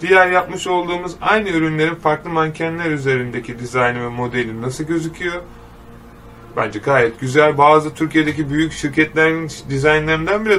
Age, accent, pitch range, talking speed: 30-49, native, 135-160 Hz, 125 wpm